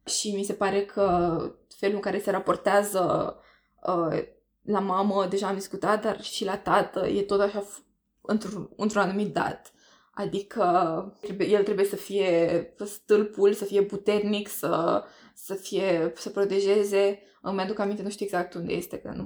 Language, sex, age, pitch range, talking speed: Romanian, female, 20-39, 185-210 Hz, 155 wpm